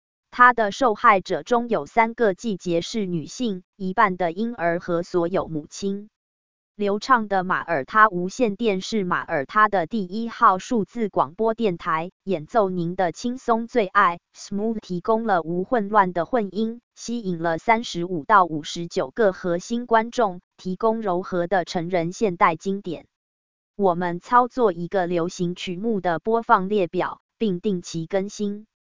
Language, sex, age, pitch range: English, female, 20-39, 175-225 Hz